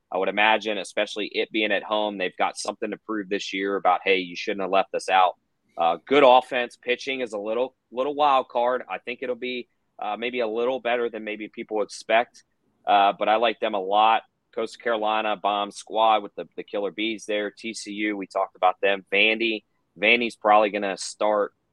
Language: English